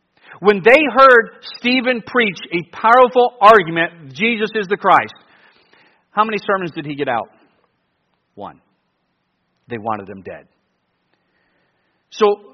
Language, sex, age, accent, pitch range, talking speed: English, male, 50-69, American, 170-270 Hz, 120 wpm